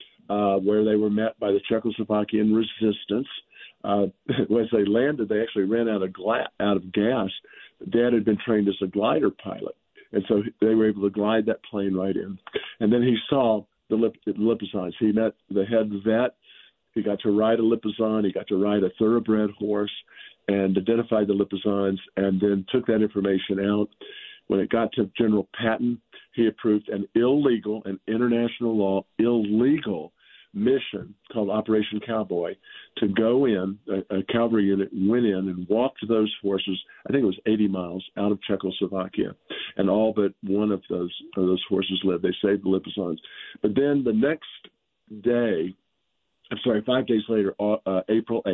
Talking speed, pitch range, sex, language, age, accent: 175 wpm, 95-110 Hz, male, English, 50-69, American